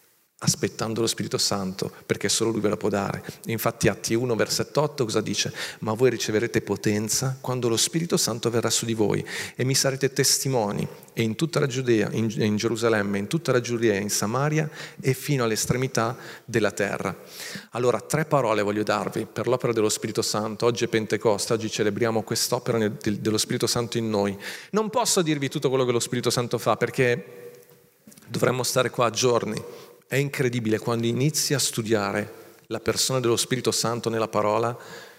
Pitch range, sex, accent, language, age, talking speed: 110-130 Hz, male, native, Italian, 40-59, 175 wpm